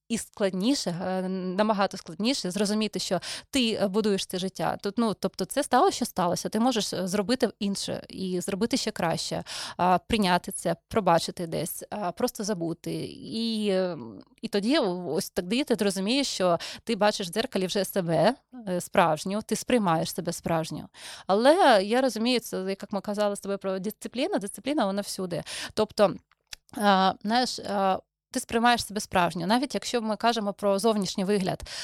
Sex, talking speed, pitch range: female, 145 wpm, 190-240 Hz